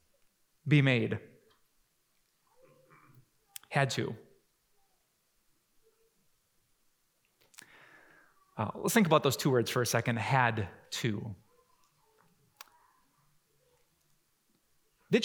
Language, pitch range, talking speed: English, 140-205 Hz, 65 wpm